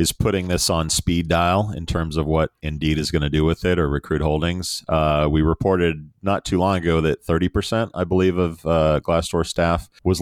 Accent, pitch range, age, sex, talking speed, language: American, 80-95 Hz, 40-59, male, 210 wpm, English